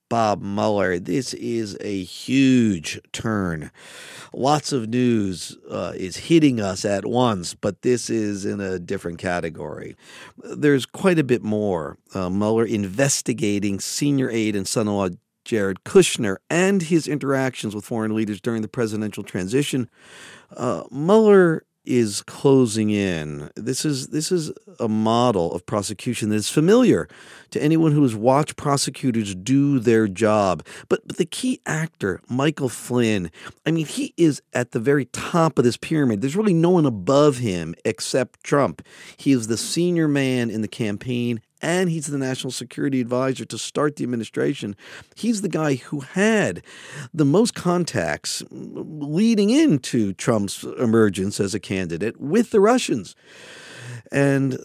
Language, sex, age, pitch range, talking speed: English, male, 50-69, 105-150 Hz, 150 wpm